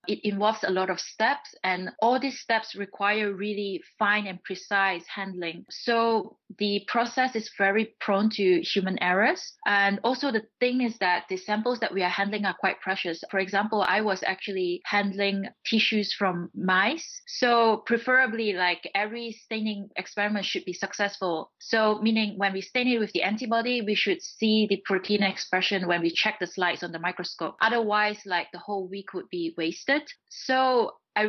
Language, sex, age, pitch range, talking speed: English, female, 20-39, 190-225 Hz, 175 wpm